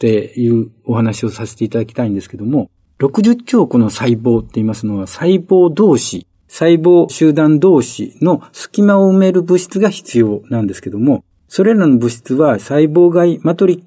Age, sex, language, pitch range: 50-69, male, Japanese, 115-165 Hz